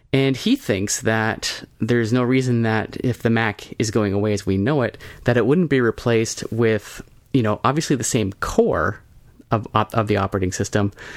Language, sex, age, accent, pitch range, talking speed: English, male, 30-49, American, 100-120 Hz, 190 wpm